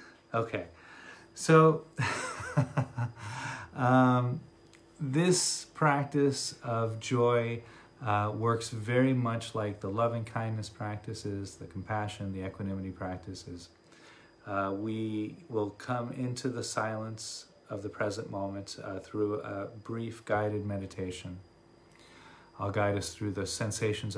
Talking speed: 105 wpm